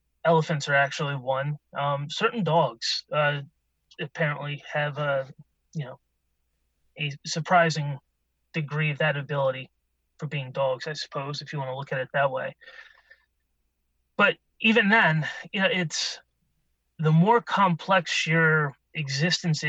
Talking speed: 135 wpm